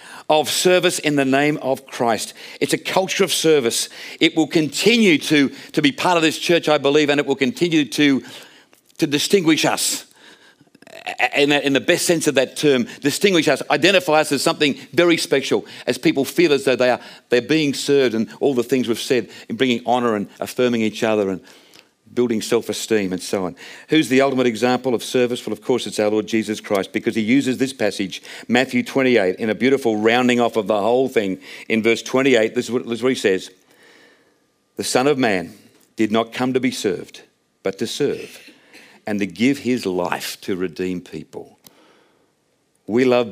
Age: 50-69